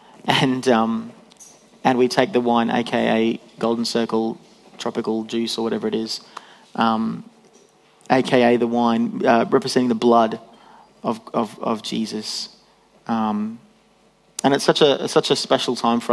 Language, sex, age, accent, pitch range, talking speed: English, male, 30-49, Australian, 115-135 Hz, 140 wpm